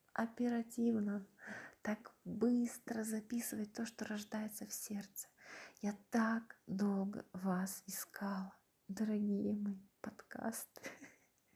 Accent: native